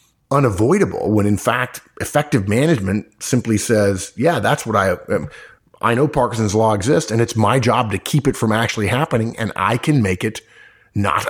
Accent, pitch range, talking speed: American, 100-125 Hz, 175 wpm